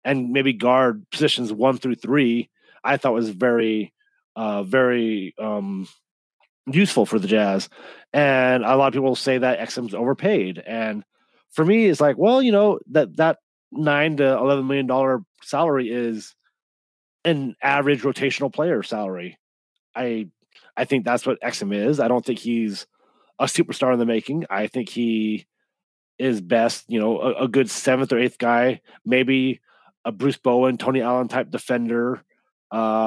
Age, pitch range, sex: 30-49, 115-135 Hz, male